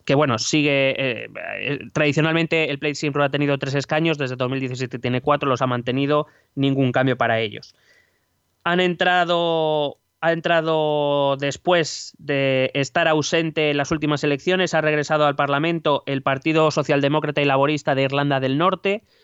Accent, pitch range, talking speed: Spanish, 125-155 Hz, 155 wpm